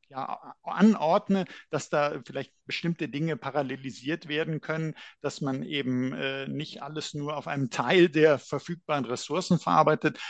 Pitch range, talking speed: 125-155 Hz, 140 wpm